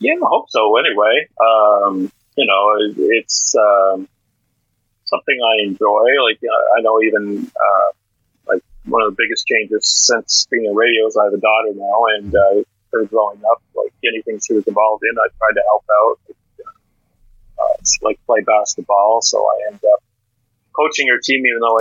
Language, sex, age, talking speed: English, male, 30-49, 180 wpm